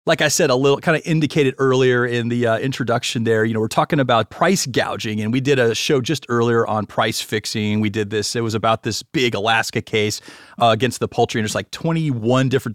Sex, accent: male, American